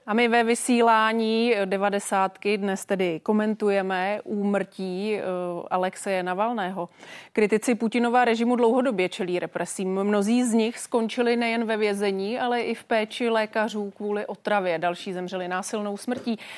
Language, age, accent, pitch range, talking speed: Czech, 30-49, native, 190-230 Hz, 125 wpm